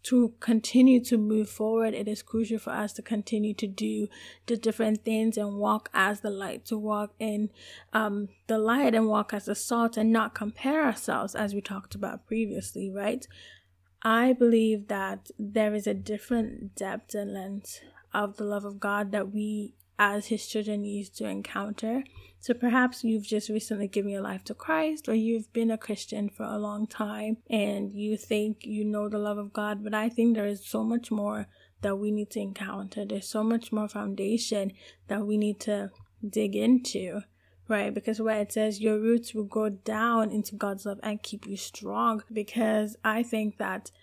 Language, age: English, 10-29